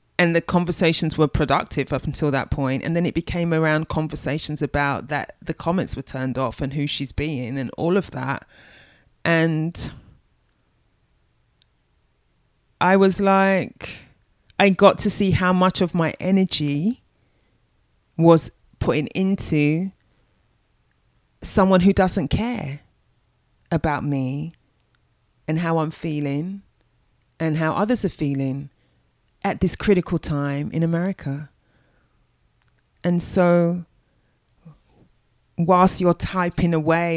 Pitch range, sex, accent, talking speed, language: 140-175 Hz, female, British, 120 wpm, English